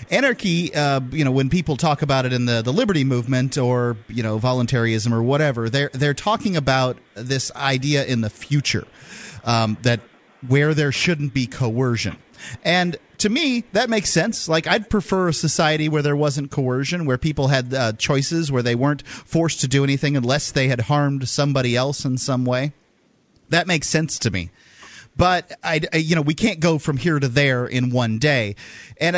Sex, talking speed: male, 190 wpm